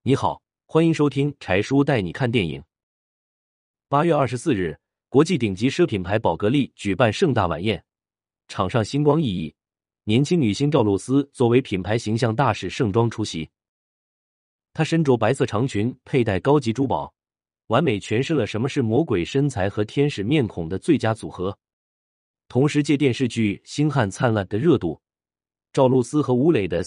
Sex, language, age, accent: male, Chinese, 30-49, native